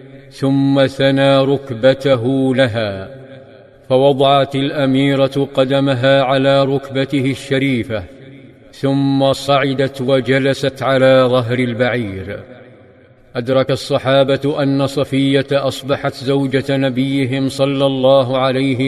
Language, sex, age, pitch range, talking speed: Arabic, male, 50-69, 130-135 Hz, 85 wpm